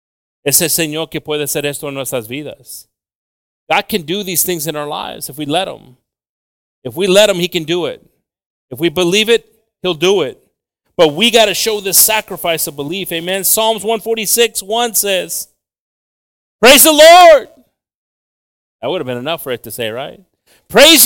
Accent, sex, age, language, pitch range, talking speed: American, male, 40-59, English, 175-270 Hz, 185 wpm